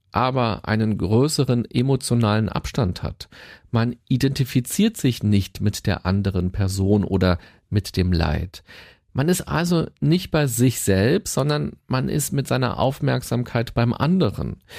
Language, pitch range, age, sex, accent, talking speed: German, 100-140 Hz, 40-59, male, German, 135 wpm